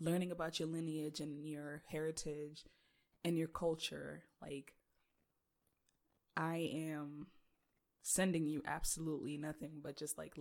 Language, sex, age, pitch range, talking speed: English, female, 20-39, 150-165 Hz, 115 wpm